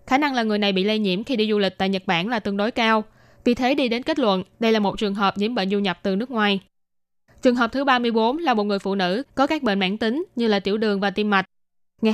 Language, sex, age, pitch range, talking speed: Vietnamese, female, 10-29, 200-250 Hz, 290 wpm